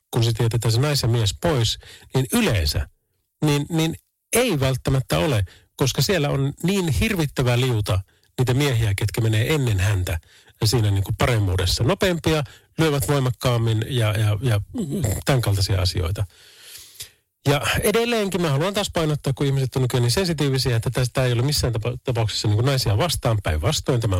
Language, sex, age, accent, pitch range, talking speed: Finnish, male, 40-59, native, 105-145 Hz, 155 wpm